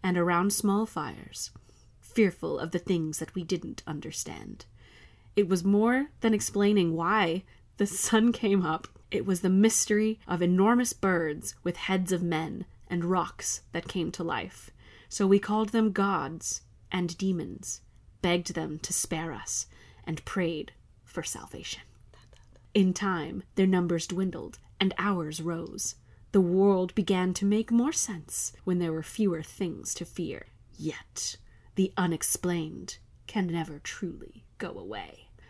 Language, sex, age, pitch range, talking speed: English, female, 30-49, 165-200 Hz, 145 wpm